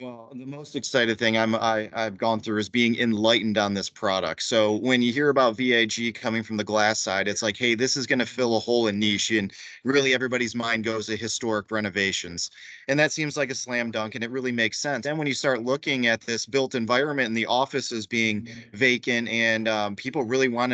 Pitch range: 115-140 Hz